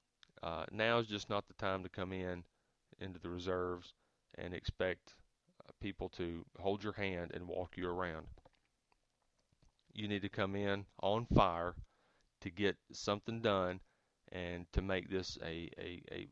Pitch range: 90-110 Hz